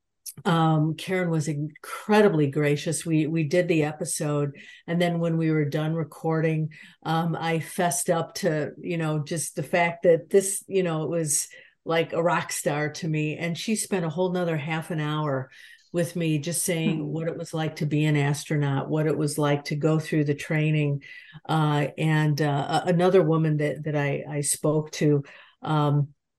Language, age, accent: English, 50-69, American